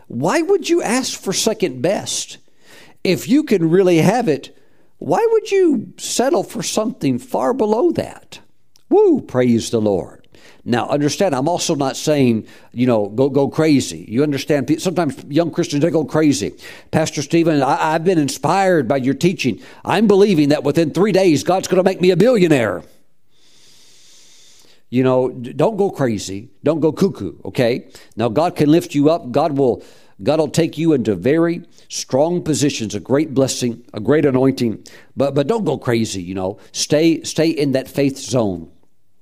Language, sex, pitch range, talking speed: English, male, 130-170 Hz, 170 wpm